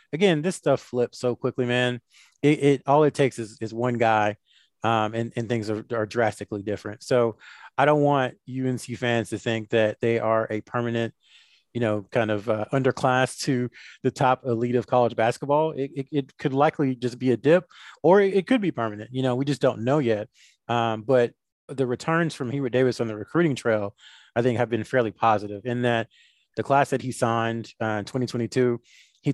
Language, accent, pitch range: English, American, 110-135 Hz